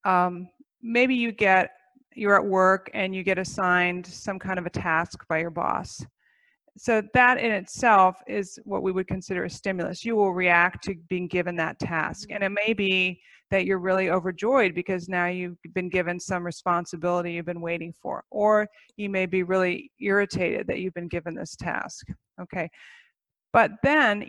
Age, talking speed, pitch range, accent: 40-59, 180 wpm, 175-215 Hz, American